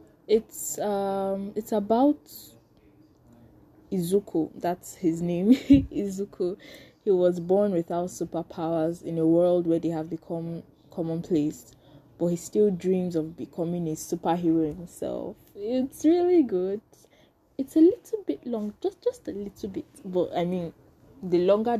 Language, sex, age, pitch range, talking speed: English, female, 10-29, 170-230 Hz, 135 wpm